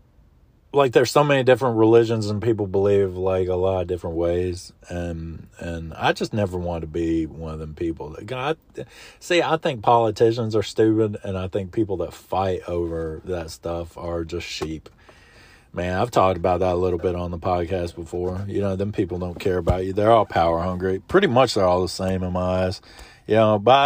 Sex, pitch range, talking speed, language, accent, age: male, 90-115 Hz, 210 wpm, English, American, 40-59